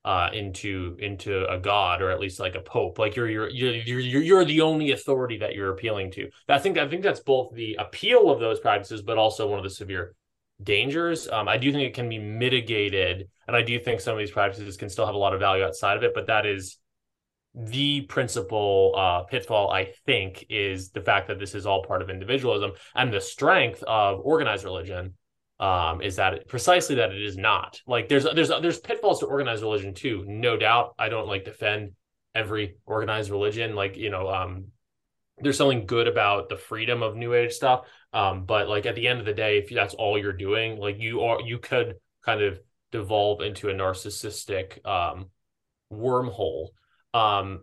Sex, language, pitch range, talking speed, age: male, English, 100-125 Hz, 205 wpm, 20-39